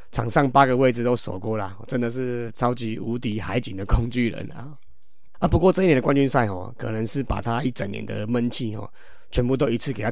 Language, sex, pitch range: Chinese, male, 110-130 Hz